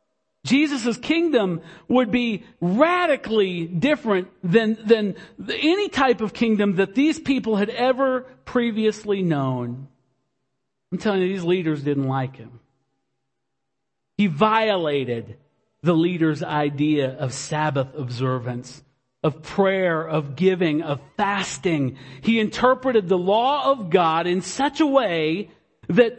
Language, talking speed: English, 120 wpm